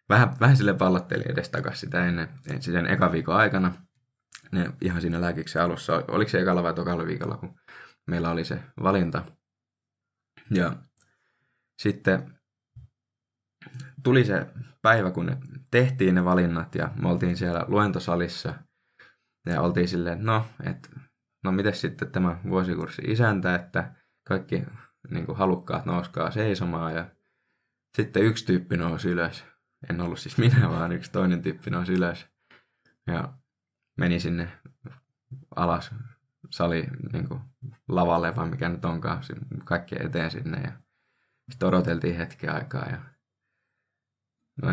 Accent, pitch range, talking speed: native, 90-125 Hz, 130 wpm